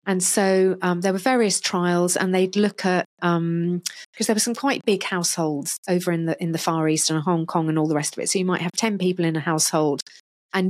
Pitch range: 175-225 Hz